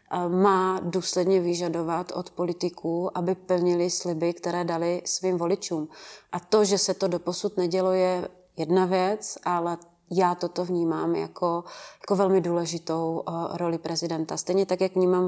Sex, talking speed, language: female, 140 wpm, Czech